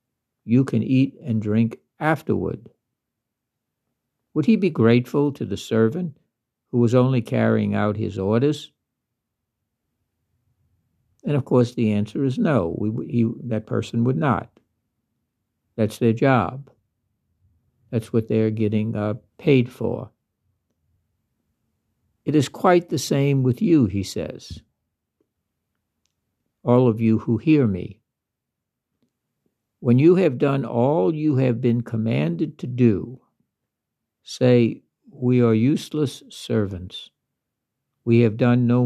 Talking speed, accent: 115 wpm, American